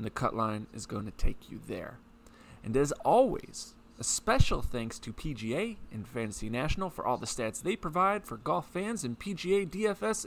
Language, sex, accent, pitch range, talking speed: English, male, American, 115-180 Hz, 195 wpm